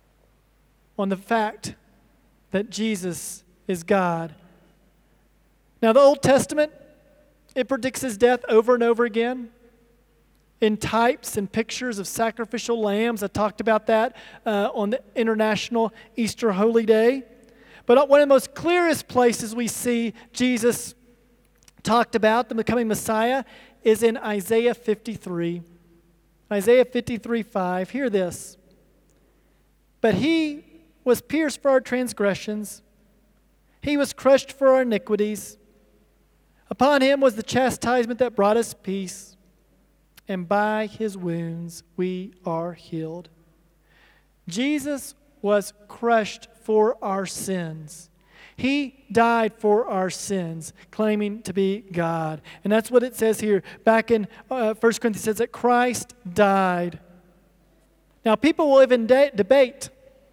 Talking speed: 125 wpm